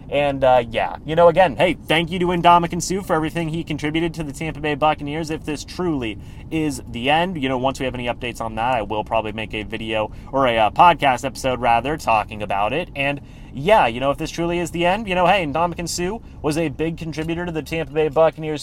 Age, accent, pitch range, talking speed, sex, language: 30-49, American, 115-160 Hz, 240 wpm, male, English